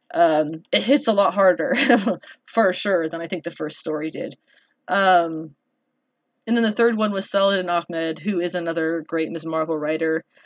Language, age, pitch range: English, 20-39, 170-230 Hz